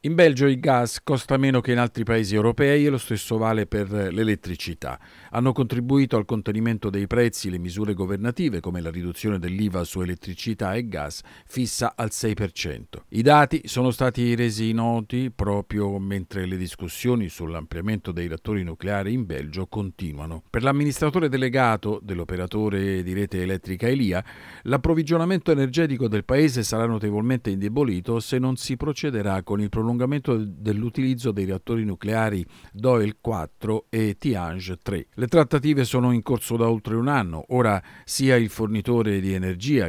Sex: male